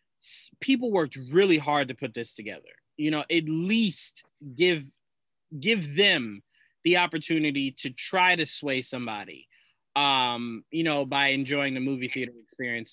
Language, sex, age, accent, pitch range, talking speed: English, male, 20-39, American, 125-175 Hz, 145 wpm